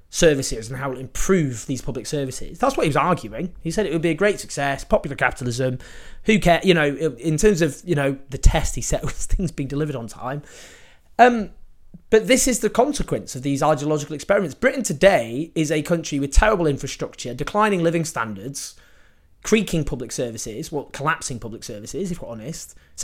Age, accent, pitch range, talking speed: 30-49, British, 115-165 Hz, 195 wpm